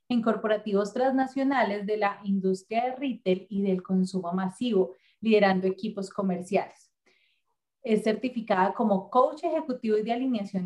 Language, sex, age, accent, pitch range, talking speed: Spanish, female, 30-49, Colombian, 195-250 Hz, 130 wpm